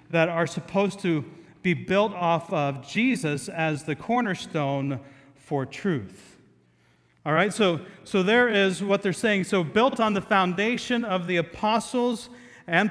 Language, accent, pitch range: English, American, 145-195 Hz